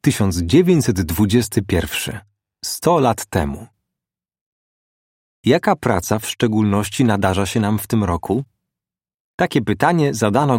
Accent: native